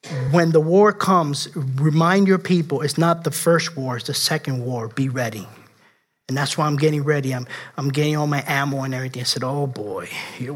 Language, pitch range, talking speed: English, 170-225 Hz, 210 wpm